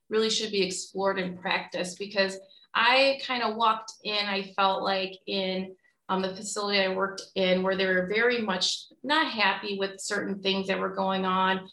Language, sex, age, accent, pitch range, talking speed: English, female, 30-49, American, 195-230 Hz, 185 wpm